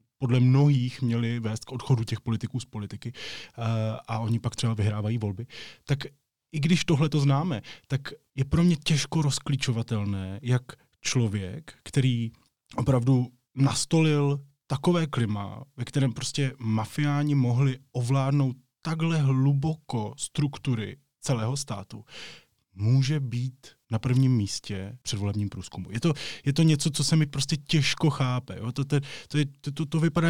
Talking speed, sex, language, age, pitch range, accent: 145 wpm, male, Czech, 20-39, 115-145 Hz, native